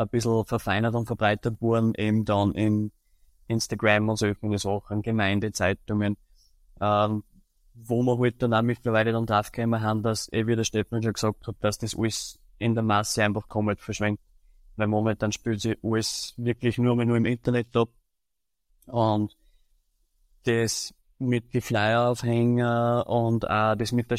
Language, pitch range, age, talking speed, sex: German, 105-120 Hz, 20-39, 160 wpm, male